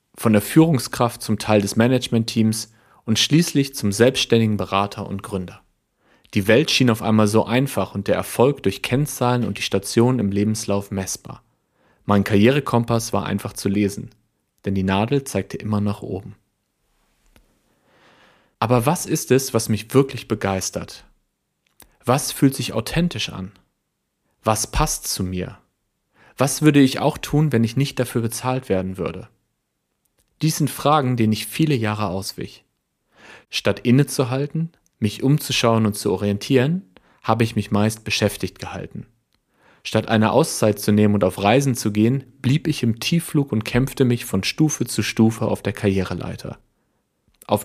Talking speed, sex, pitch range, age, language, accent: 150 wpm, male, 105-130 Hz, 40-59, German, German